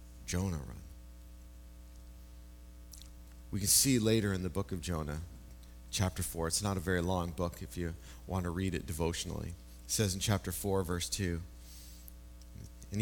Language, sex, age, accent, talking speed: English, male, 30-49, American, 155 wpm